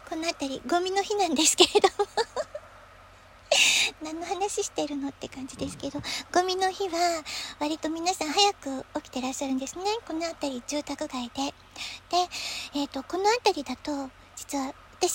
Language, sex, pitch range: Japanese, male, 285-385 Hz